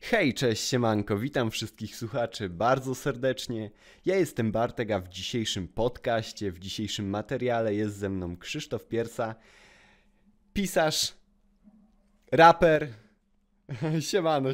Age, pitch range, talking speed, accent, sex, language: 20-39, 110-140 Hz, 105 wpm, native, male, Polish